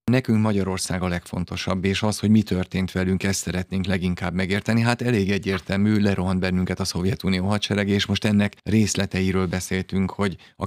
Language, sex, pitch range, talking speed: Hungarian, male, 95-105 Hz, 165 wpm